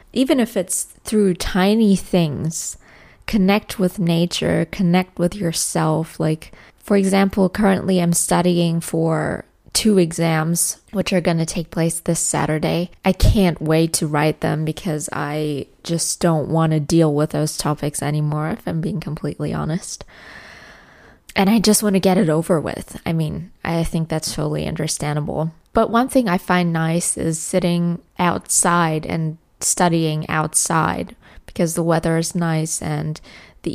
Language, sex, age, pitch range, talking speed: English, female, 20-39, 155-180 Hz, 155 wpm